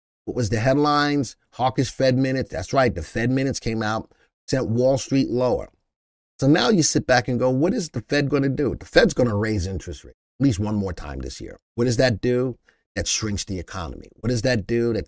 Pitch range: 100-130 Hz